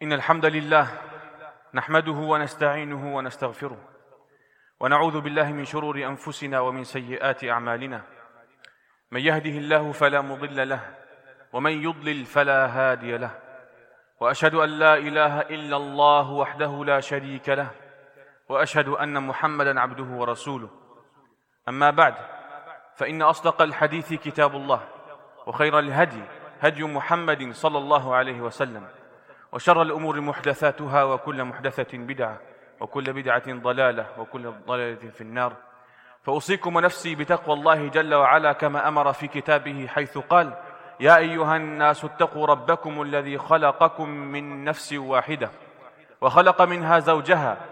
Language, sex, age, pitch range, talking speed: Danish, male, 30-49, 135-155 Hz, 115 wpm